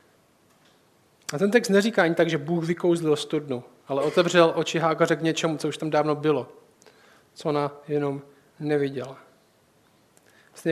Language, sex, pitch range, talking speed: Czech, male, 145-165 Hz, 145 wpm